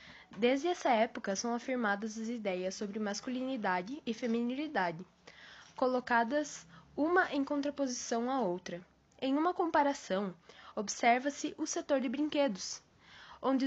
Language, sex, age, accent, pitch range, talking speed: Portuguese, female, 10-29, Brazilian, 195-270 Hz, 115 wpm